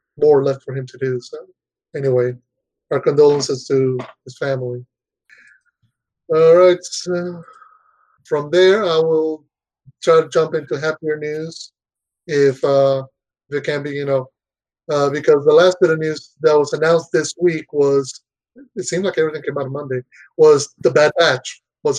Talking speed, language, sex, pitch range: 165 wpm, English, male, 145-180 Hz